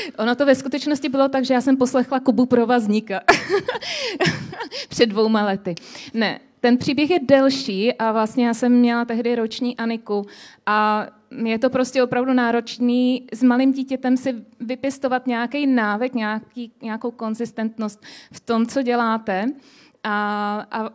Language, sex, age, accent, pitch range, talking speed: Czech, female, 20-39, native, 220-255 Hz, 140 wpm